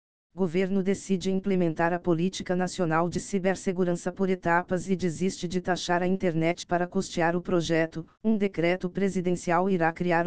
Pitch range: 170-190 Hz